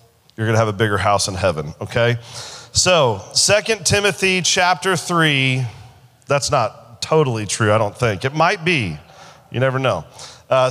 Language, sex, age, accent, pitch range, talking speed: English, male, 40-59, American, 135-205 Hz, 155 wpm